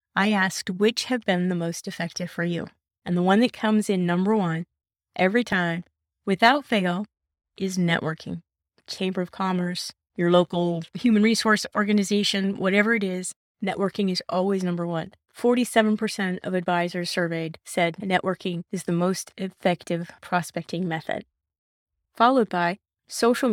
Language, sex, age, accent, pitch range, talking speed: English, female, 30-49, American, 175-220 Hz, 140 wpm